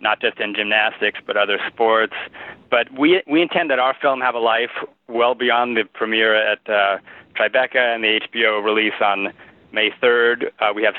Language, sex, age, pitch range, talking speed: English, male, 30-49, 105-120 Hz, 185 wpm